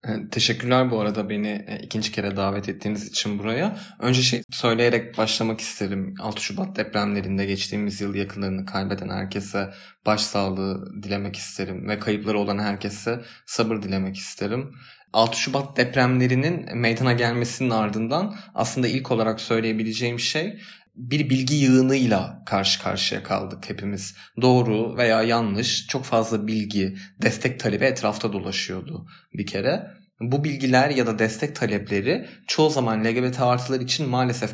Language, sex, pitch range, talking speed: Turkish, male, 100-125 Hz, 130 wpm